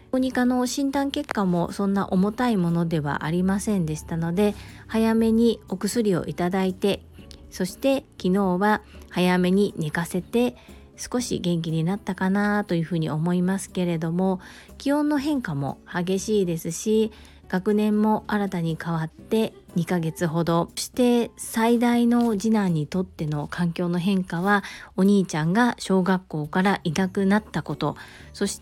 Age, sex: 40-59, female